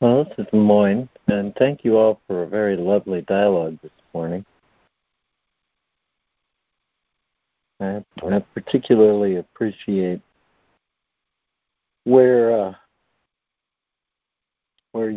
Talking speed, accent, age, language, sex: 85 wpm, American, 60-79, English, male